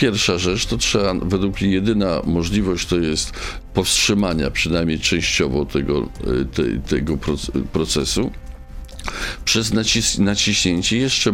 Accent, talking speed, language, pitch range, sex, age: native, 100 wpm, Polish, 85-120 Hz, male, 50-69